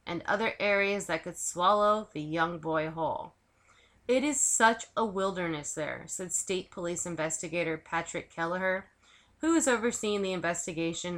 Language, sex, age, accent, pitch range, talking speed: English, female, 20-39, American, 165-205 Hz, 145 wpm